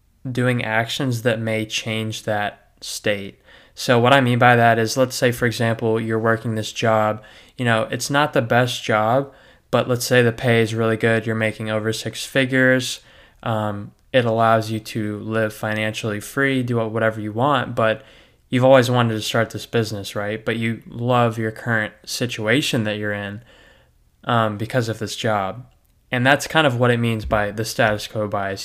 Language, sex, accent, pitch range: English, male, American, 110-125 Hz